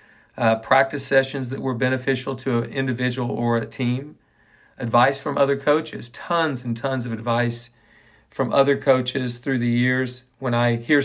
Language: English